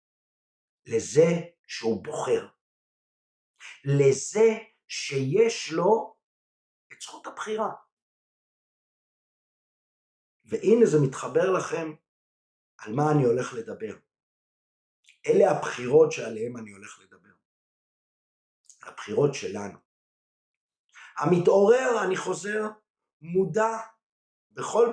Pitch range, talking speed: 130-220 Hz, 75 wpm